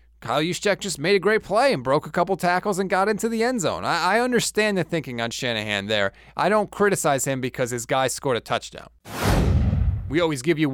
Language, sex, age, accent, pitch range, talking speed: English, male, 20-39, American, 130-180 Hz, 225 wpm